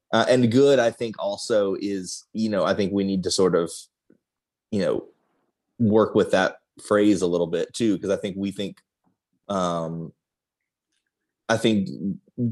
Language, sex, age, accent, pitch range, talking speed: English, male, 30-49, American, 95-110 Hz, 165 wpm